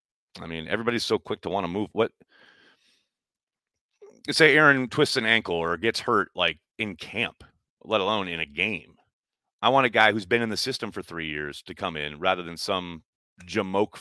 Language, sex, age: English, male, 30-49